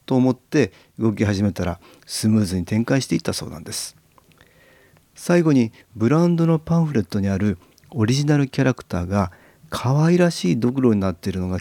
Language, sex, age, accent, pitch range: Japanese, male, 40-59, native, 100-140 Hz